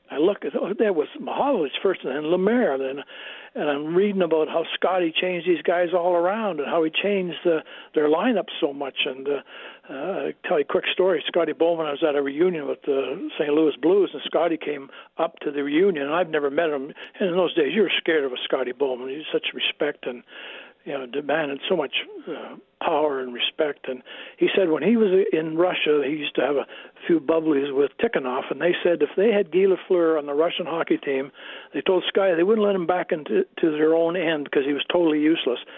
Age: 60-79